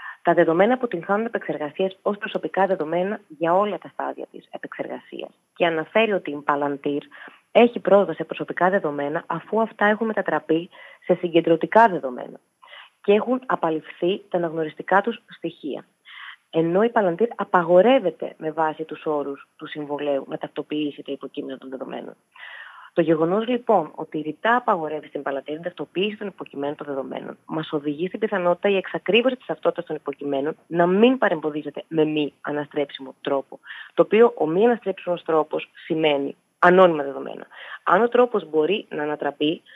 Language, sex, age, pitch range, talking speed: Greek, female, 30-49, 150-200 Hz, 150 wpm